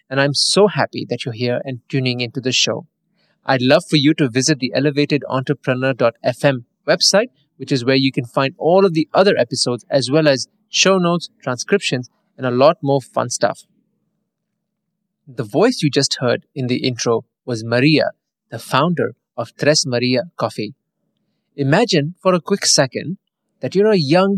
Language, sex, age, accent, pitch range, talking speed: English, male, 30-49, Indian, 130-180 Hz, 170 wpm